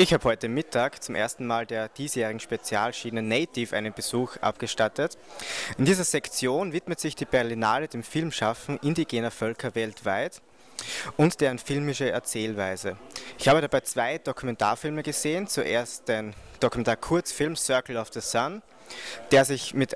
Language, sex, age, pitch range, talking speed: German, male, 20-39, 115-145 Hz, 140 wpm